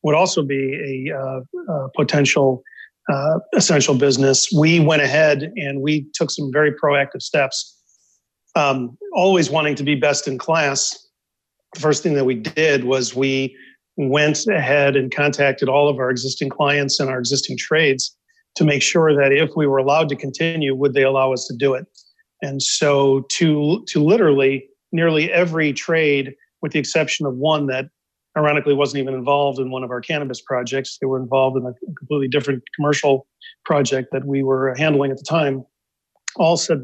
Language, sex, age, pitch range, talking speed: English, male, 40-59, 135-155 Hz, 175 wpm